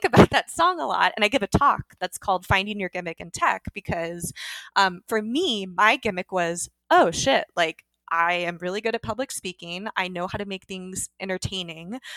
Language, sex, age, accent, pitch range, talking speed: English, female, 20-39, American, 175-225 Hz, 200 wpm